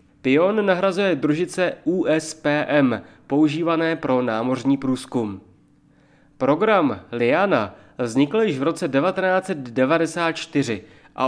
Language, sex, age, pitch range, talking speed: Czech, male, 30-49, 135-175 Hz, 85 wpm